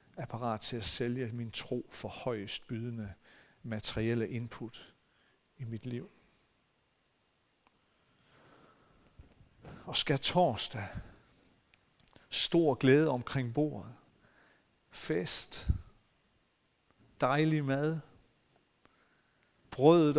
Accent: native